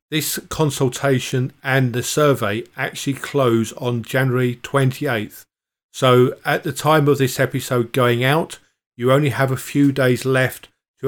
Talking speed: 145 wpm